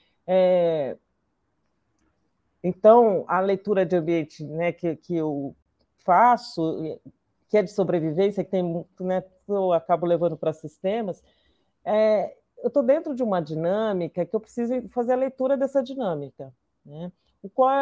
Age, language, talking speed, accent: 40-59, Portuguese, 140 wpm, Brazilian